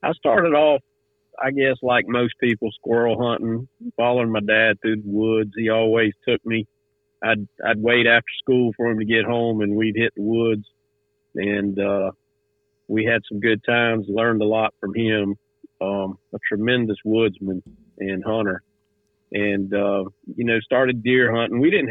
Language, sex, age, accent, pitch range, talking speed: English, male, 50-69, American, 105-115 Hz, 170 wpm